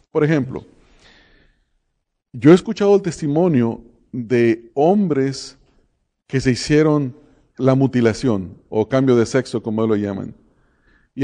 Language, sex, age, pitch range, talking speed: English, male, 50-69, 120-160 Hz, 115 wpm